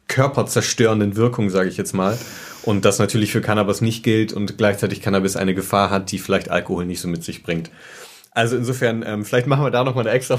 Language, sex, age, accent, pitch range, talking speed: German, male, 30-49, German, 105-130 Hz, 220 wpm